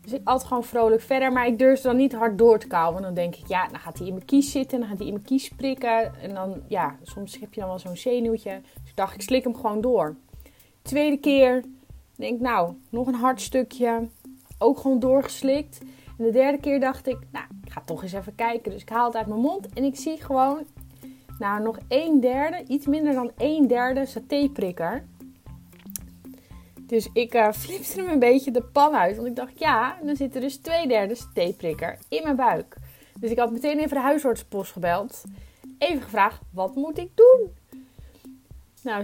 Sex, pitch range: female, 195-265 Hz